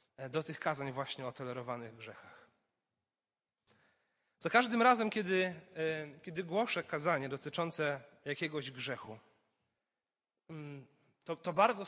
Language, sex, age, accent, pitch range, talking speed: Polish, male, 30-49, native, 160-210 Hz, 100 wpm